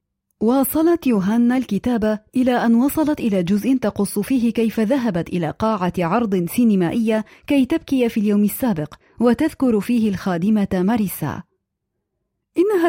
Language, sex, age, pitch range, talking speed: Arabic, female, 30-49, 210-285 Hz, 120 wpm